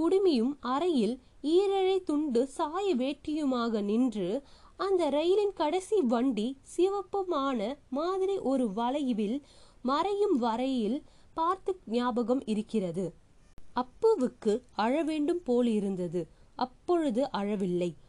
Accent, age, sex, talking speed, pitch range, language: native, 20-39, female, 80 wpm, 235-345 Hz, Tamil